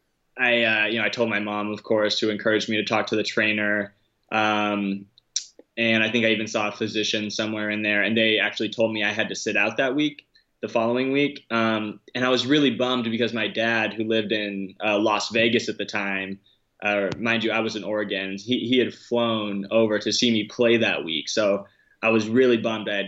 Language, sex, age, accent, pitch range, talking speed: English, male, 20-39, American, 105-120 Hz, 230 wpm